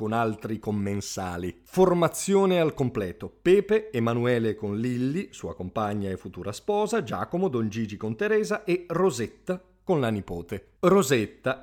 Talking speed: 130 wpm